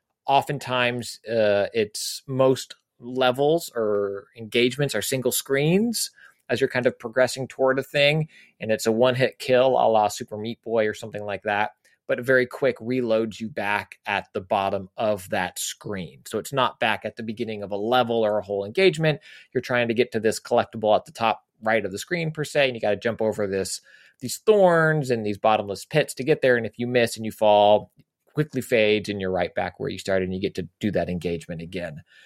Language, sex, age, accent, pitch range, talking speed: English, male, 20-39, American, 110-140 Hz, 215 wpm